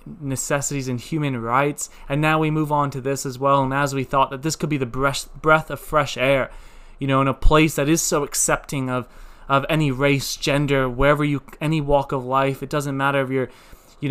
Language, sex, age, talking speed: English, male, 20-39, 220 wpm